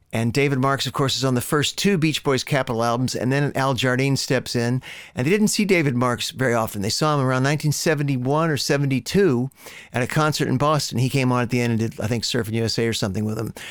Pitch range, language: 120-145 Hz, English